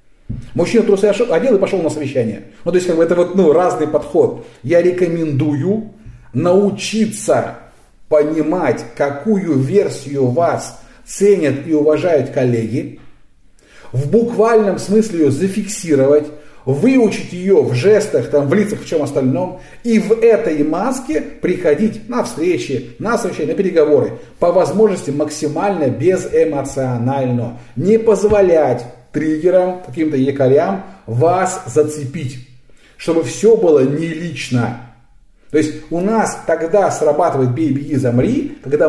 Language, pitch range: Russian, 135-210 Hz